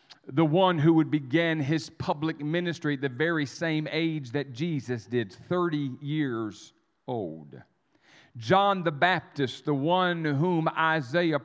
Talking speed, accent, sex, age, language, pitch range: 135 wpm, American, male, 50-69, English, 140-175 Hz